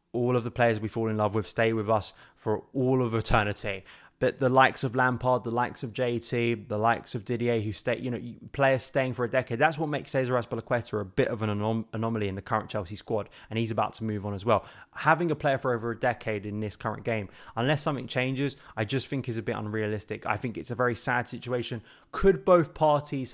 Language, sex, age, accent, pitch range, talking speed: English, male, 20-39, British, 110-125 Hz, 240 wpm